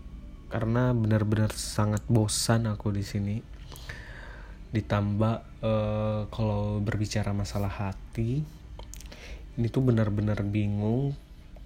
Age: 30-49